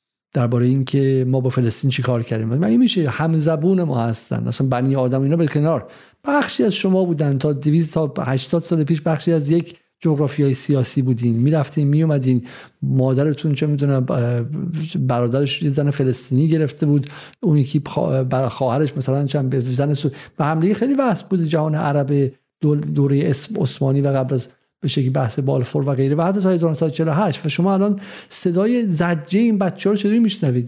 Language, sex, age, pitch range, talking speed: Persian, male, 50-69, 135-170 Hz, 170 wpm